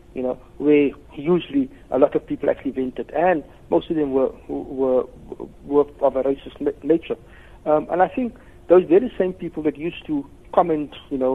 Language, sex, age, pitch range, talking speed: English, male, 60-79, 135-175 Hz, 185 wpm